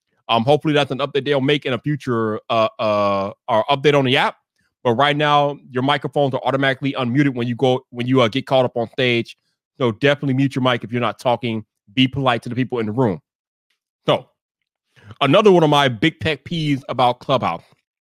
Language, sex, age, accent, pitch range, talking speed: English, male, 30-49, American, 135-180 Hz, 210 wpm